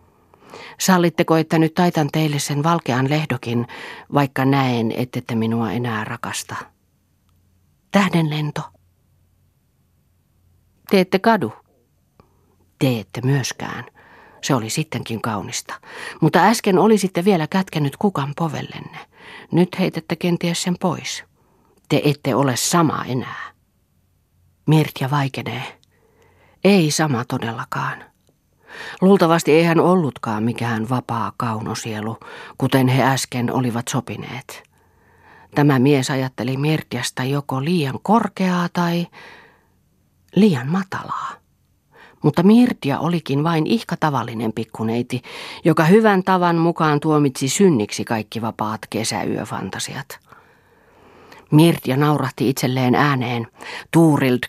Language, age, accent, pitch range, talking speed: Finnish, 40-59, native, 120-165 Hz, 100 wpm